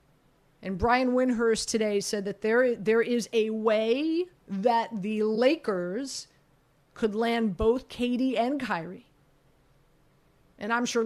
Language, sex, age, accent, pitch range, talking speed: English, female, 40-59, American, 185-245 Hz, 125 wpm